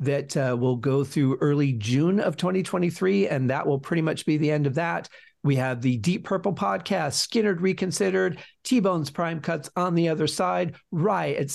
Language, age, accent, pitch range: English, 40-59, American, 140-190 Hz